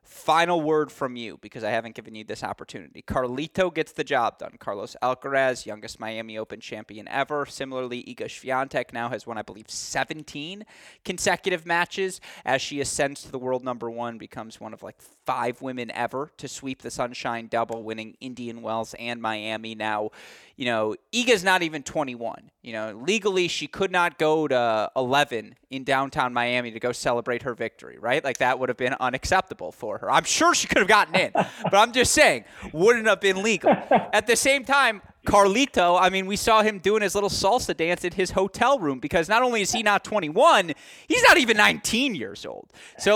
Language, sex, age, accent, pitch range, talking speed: English, male, 20-39, American, 120-195 Hz, 195 wpm